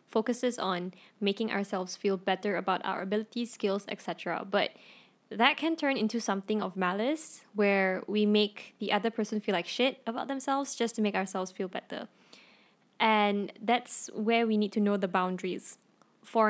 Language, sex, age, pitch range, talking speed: English, female, 10-29, 195-245 Hz, 165 wpm